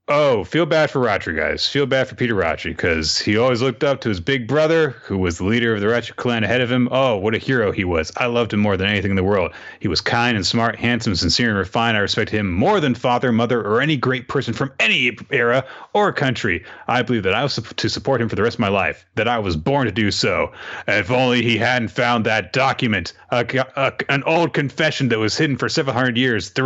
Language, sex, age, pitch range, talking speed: English, male, 30-49, 115-150 Hz, 245 wpm